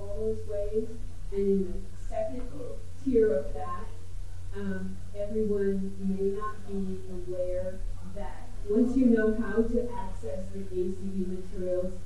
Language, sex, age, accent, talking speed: English, female, 30-49, American, 120 wpm